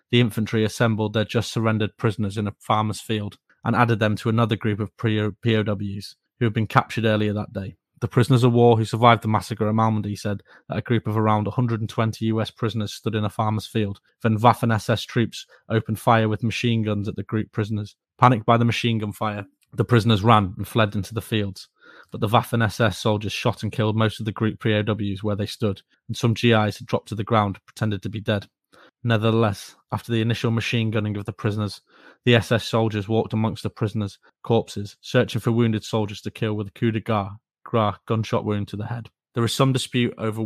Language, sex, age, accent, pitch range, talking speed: English, male, 20-39, British, 105-115 Hz, 210 wpm